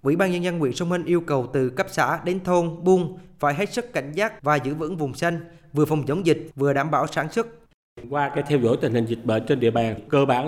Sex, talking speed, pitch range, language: male, 270 wpm, 125-170 Hz, Vietnamese